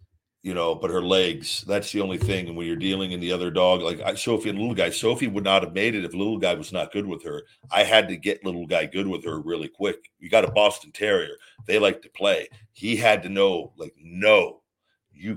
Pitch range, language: 95-115 Hz, English